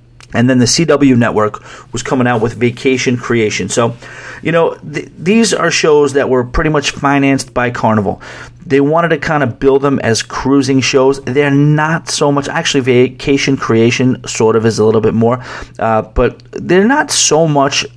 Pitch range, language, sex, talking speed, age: 115-140 Hz, English, male, 185 wpm, 40-59